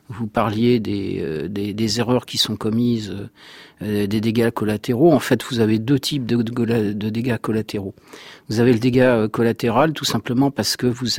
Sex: male